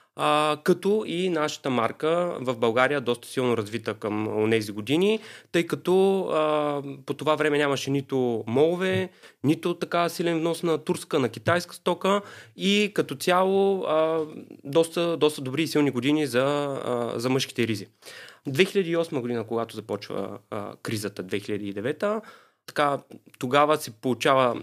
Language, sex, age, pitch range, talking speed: Bulgarian, male, 20-39, 125-160 Hz, 140 wpm